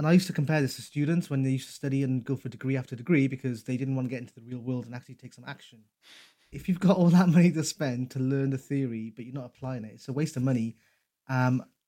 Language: English